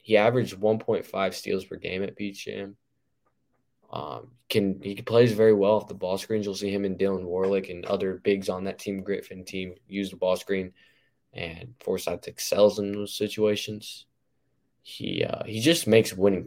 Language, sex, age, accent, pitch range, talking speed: English, male, 10-29, American, 95-110 Hz, 175 wpm